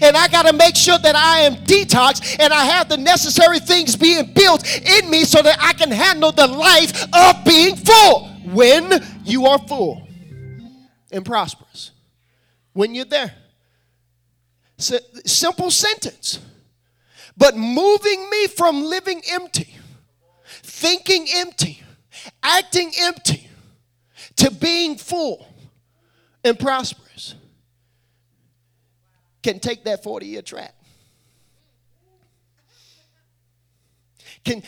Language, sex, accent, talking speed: English, male, American, 105 wpm